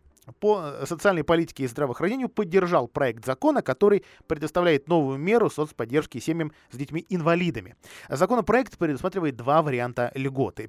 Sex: male